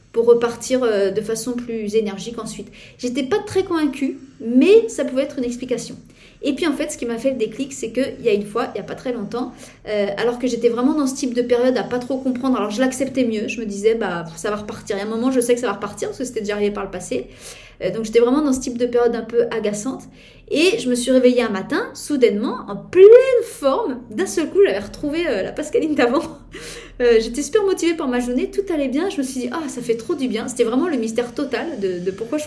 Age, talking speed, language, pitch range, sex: 30-49, 270 wpm, French, 220-270 Hz, female